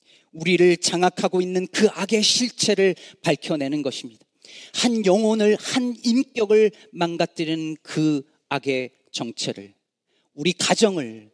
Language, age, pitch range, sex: Korean, 40-59, 120-175 Hz, male